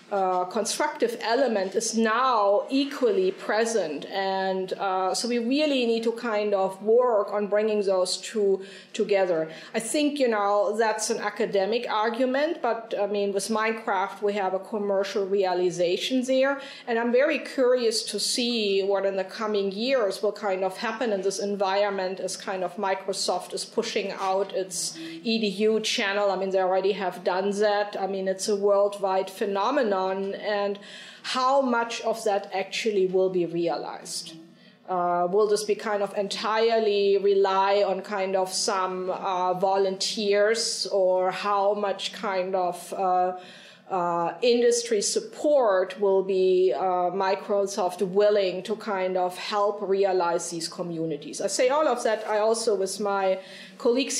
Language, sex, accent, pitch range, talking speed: English, female, German, 190-220 Hz, 150 wpm